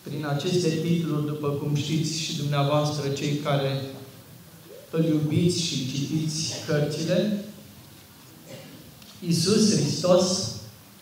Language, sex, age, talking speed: Romanian, male, 40-59, 95 wpm